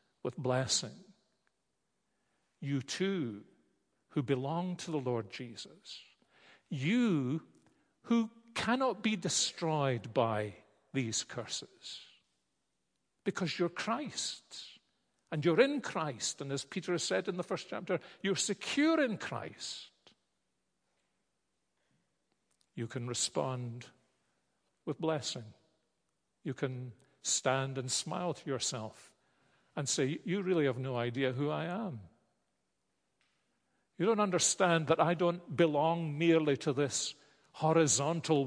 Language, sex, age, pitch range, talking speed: English, male, 50-69, 130-180 Hz, 110 wpm